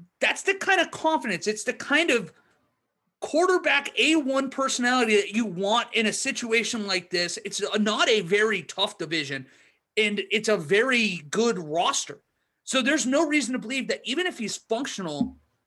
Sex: male